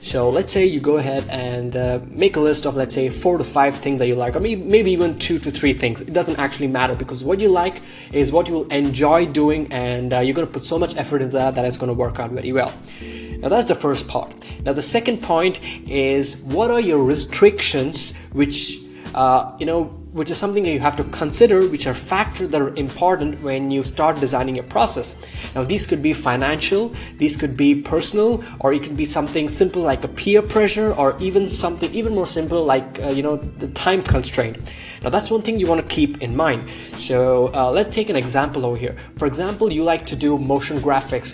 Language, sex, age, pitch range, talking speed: English, male, 20-39, 130-170 Hz, 230 wpm